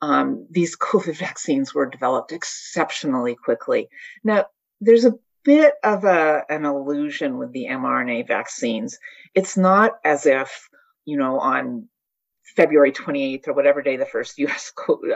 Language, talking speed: English, 145 wpm